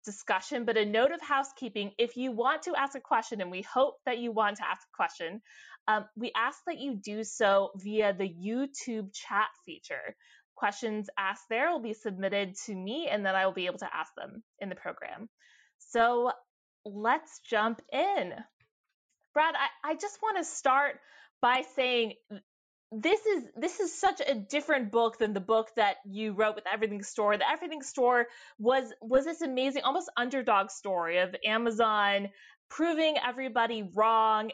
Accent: American